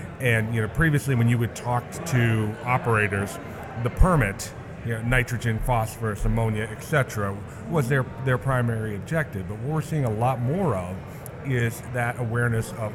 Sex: male